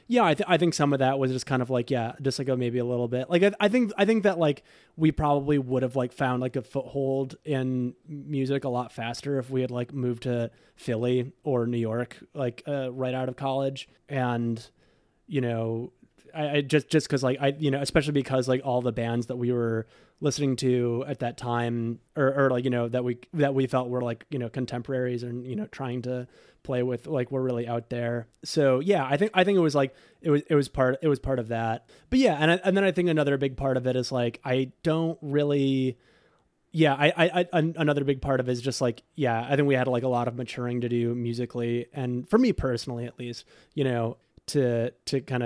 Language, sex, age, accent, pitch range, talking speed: English, male, 30-49, American, 125-145 Hz, 245 wpm